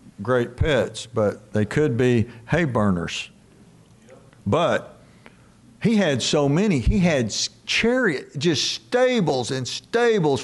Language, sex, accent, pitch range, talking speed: English, male, American, 125-160 Hz, 115 wpm